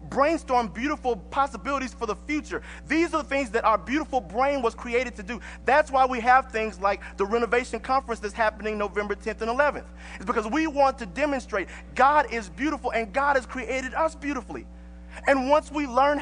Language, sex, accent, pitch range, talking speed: English, male, American, 175-270 Hz, 190 wpm